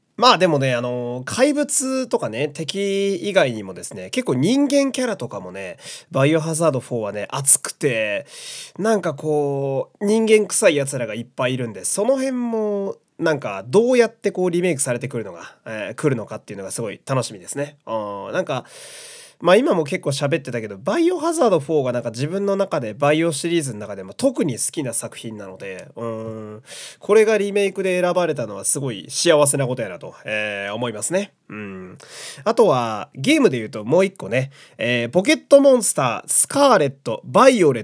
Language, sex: Japanese, male